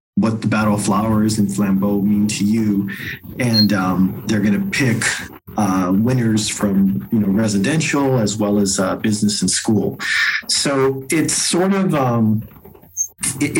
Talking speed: 155 wpm